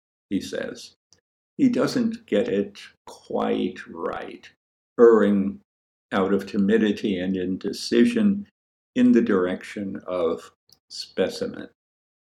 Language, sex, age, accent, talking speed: English, male, 60-79, American, 95 wpm